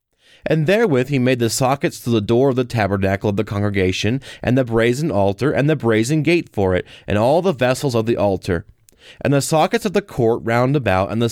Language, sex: English, male